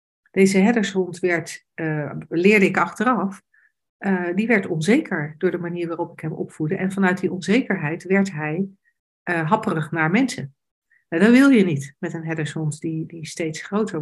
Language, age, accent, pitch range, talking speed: Dutch, 60-79, Dutch, 170-220 Hz, 160 wpm